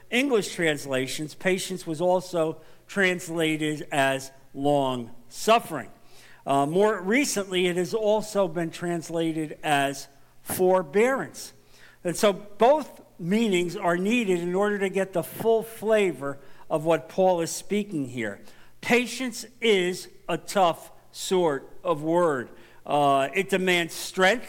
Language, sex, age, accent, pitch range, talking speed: English, male, 50-69, American, 155-200 Hz, 120 wpm